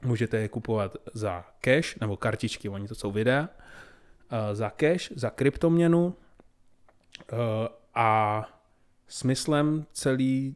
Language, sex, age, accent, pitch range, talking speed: Czech, male, 20-39, native, 115-130 Hz, 100 wpm